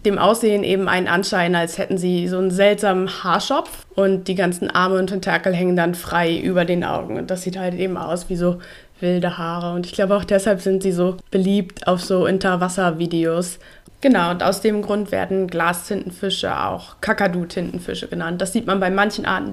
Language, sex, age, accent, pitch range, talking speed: German, female, 20-39, German, 175-205 Hz, 195 wpm